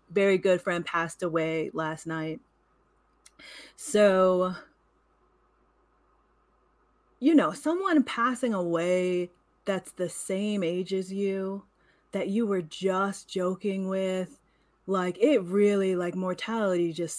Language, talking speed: English, 110 wpm